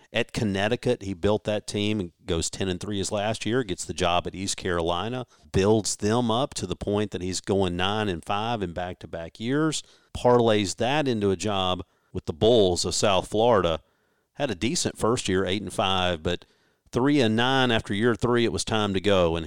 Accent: American